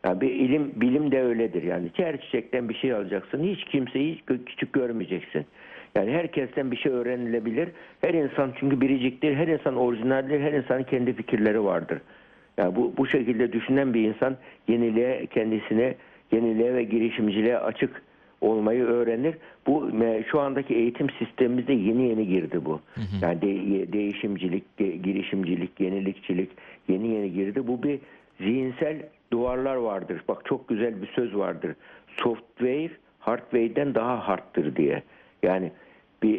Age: 60-79